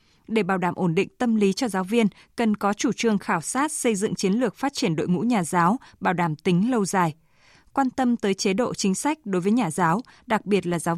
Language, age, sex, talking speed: Vietnamese, 20-39, female, 250 wpm